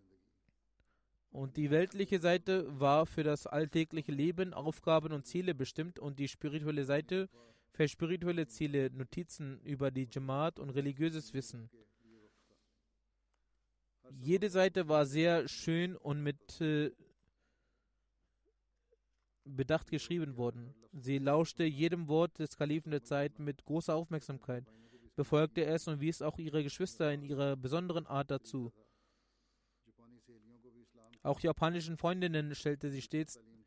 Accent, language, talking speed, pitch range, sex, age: German, German, 120 wpm, 135-155 Hz, male, 20-39